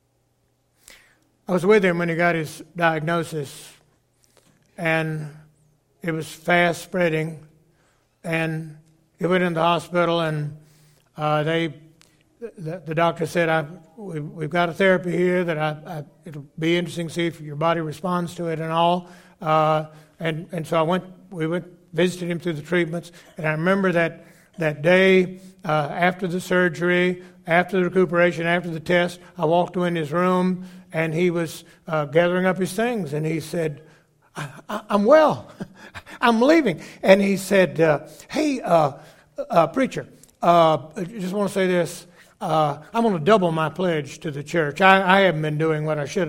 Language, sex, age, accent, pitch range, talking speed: English, male, 60-79, American, 160-180 Hz, 170 wpm